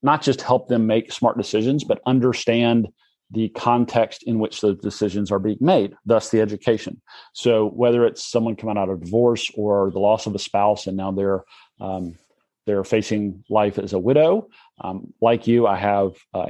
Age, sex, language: 40-59, male, English